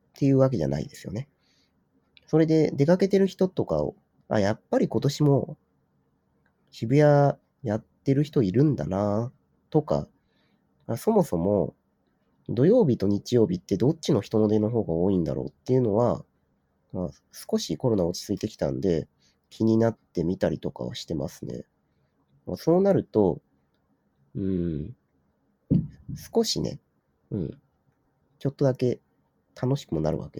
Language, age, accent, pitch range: Japanese, 40-59, native, 85-140 Hz